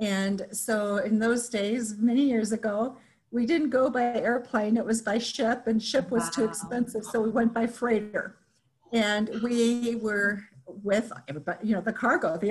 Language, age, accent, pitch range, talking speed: English, 50-69, American, 195-230 Hz, 175 wpm